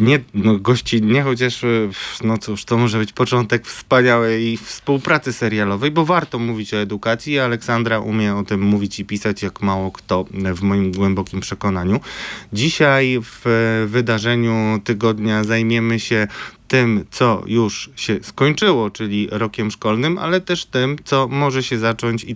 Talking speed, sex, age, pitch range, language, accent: 150 wpm, male, 20-39, 105-125 Hz, Polish, native